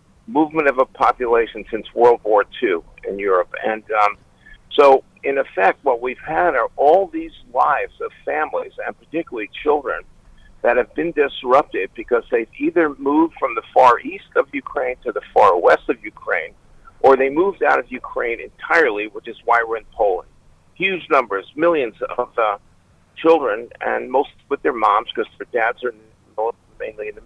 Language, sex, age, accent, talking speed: English, male, 50-69, American, 170 wpm